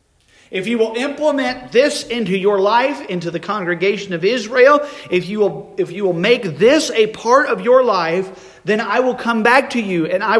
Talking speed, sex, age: 190 wpm, male, 40-59